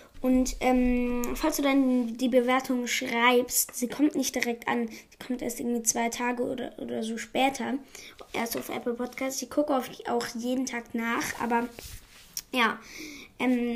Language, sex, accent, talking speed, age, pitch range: German, female, German, 155 wpm, 20-39, 225-260 Hz